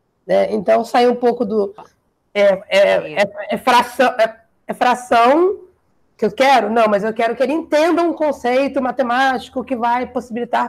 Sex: female